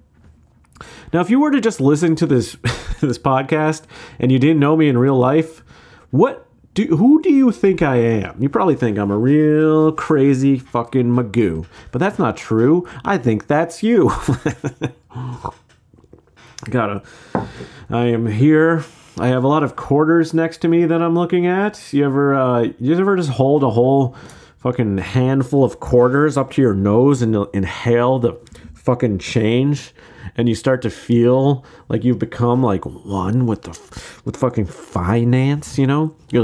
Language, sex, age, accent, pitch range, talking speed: English, male, 30-49, American, 120-155 Hz, 170 wpm